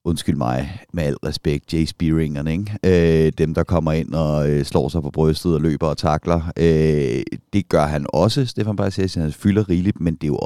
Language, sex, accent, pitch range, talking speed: Danish, male, native, 80-100 Hz, 200 wpm